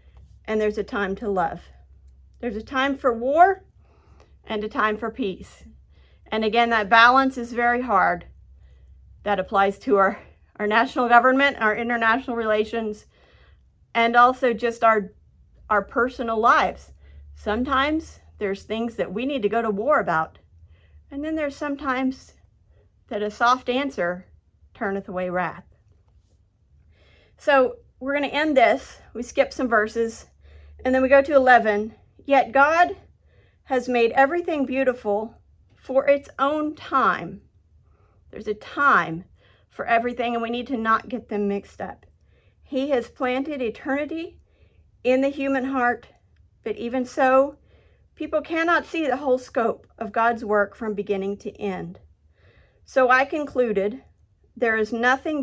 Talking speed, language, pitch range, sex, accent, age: 140 wpm, English, 195-260 Hz, female, American, 50-69